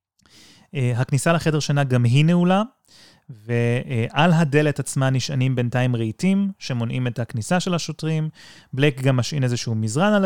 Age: 30-49